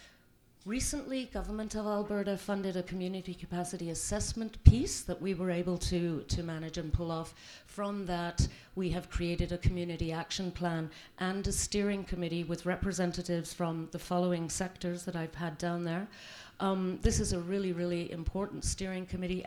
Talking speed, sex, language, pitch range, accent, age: 165 wpm, female, English, 160-180 Hz, British, 50-69